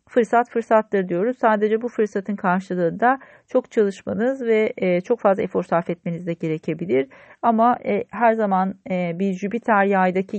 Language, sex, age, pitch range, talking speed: Turkish, female, 40-59, 185-230 Hz, 135 wpm